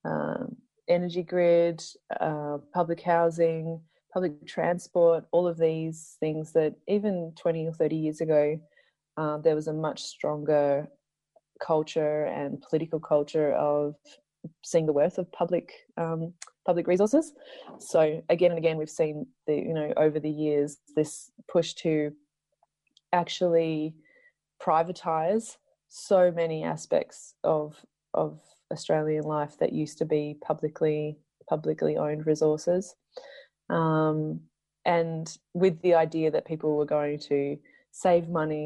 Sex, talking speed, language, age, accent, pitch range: female, 125 wpm, English, 20-39, Australian, 150-170 Hz